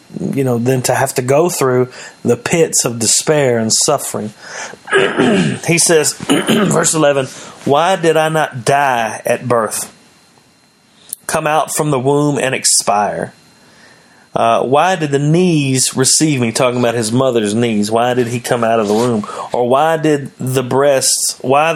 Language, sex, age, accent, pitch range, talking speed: English, male, 40-59, American, 115-135 Hz, 160 wpm